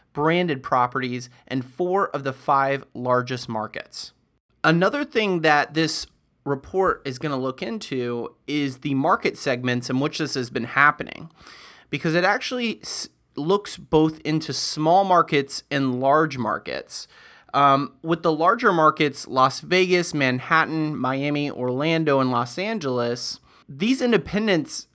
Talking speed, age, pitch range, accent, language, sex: 130 wpm, 30-49, 130-160 Hz, American, English, male